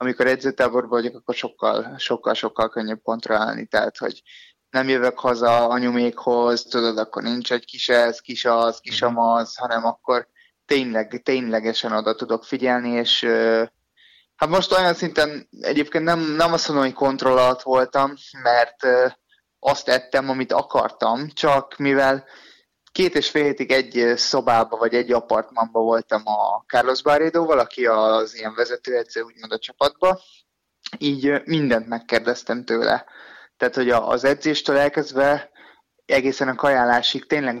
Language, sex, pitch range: Hungarian, male, 120-140 Hz